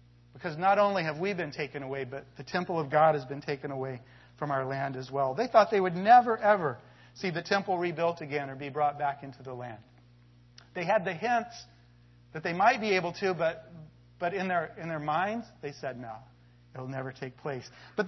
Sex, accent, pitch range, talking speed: male, American, 150-225 Hz, 220 wpm